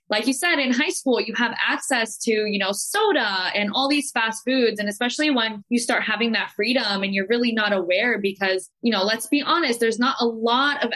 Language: English